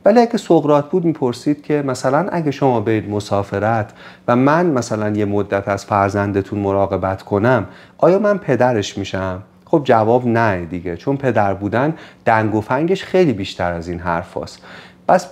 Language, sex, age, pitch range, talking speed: Persian, male, 40-59, 105-150 Hz, 160 wpm